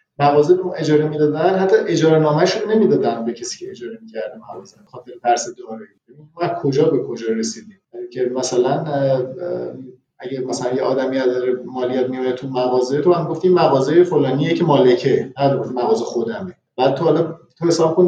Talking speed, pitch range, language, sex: 160 wpm, 130-170 Hz, Persian, male